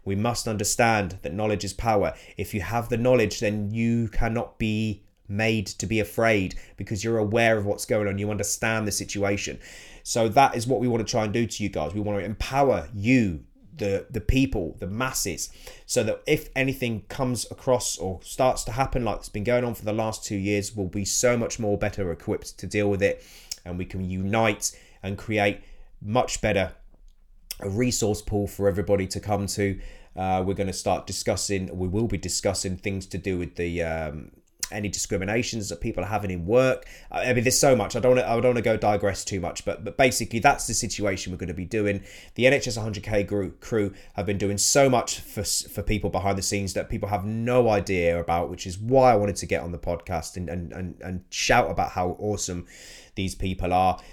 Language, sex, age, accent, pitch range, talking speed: English, male, 20-39, British, 95-110 Hz, 215 wpm